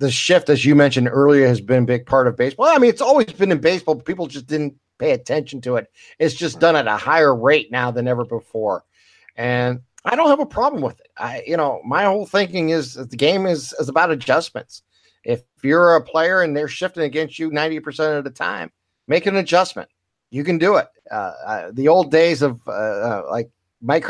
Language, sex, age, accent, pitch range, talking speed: English, male, 50-69, American, 125-155 Hz, 225 wpm